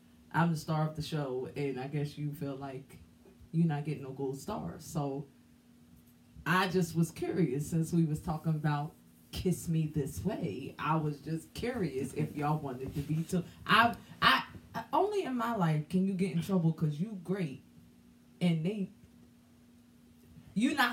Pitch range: 145-225 Hz